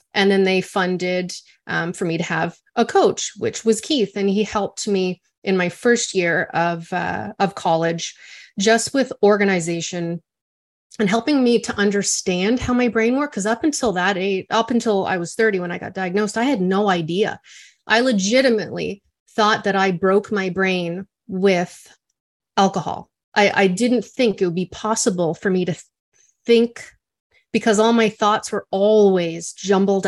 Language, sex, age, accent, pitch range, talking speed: English, female, 30-49, American, 180-220 Hz, 170 wpm